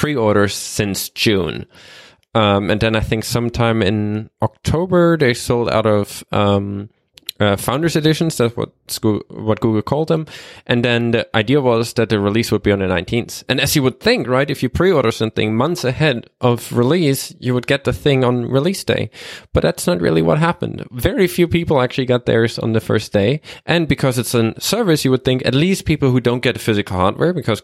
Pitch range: 110-135 Hz